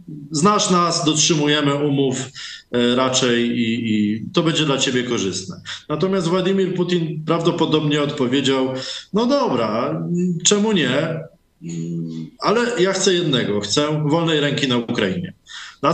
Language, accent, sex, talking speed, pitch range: Polish, native, male, 115 wpm, 125-165 Hz